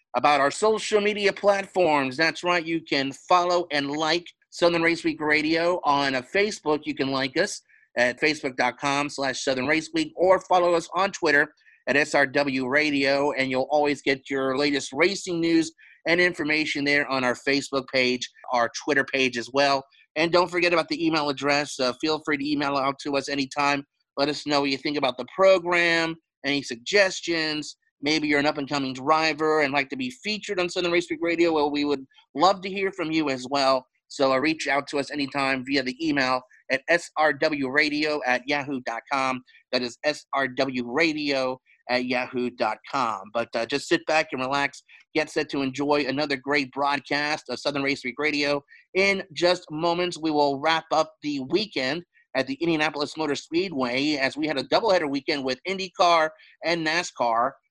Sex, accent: male, American